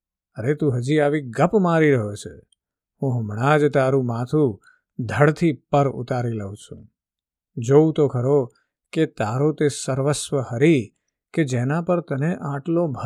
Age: 50-69